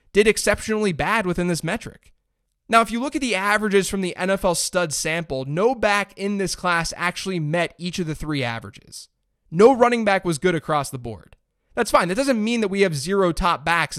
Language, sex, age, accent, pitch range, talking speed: English, male, 20-39, American, 150-205 Hz, 210 wpm